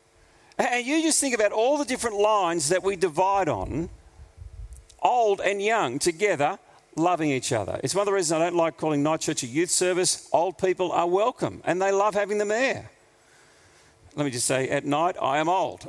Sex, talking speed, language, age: male, 200 wpm, English, 50-69